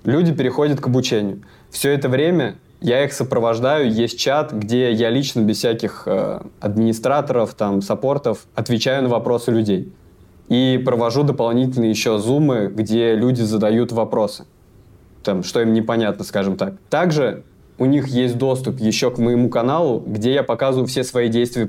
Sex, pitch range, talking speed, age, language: male, 110-130 Hz, 150 wpm, 20-39, Russian